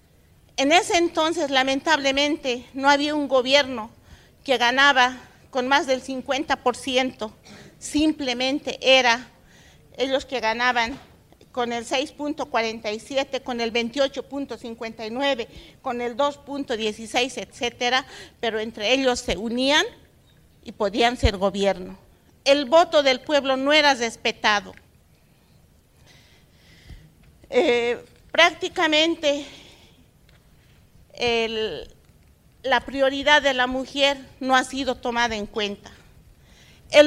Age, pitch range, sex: 40-59, 245-290 Hz, female